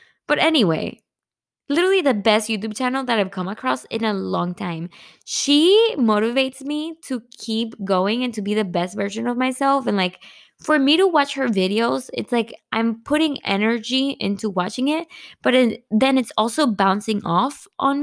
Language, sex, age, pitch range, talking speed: Spanish, female, 20-39, 195-270 Hz, 175 wpm